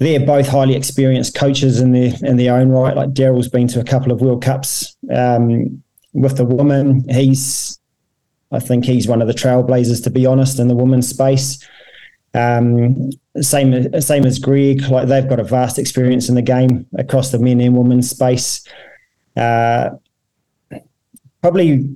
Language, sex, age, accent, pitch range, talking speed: English, male, 20-39, British, 125-140 Hz, 165 wpm